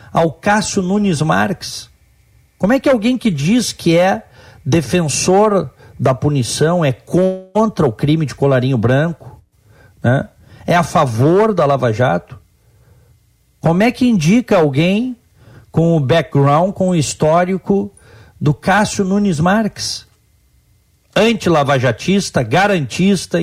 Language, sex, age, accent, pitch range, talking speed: Portuguese, male, 50-69, Brazilian, 110-165 Hz, 120 wpm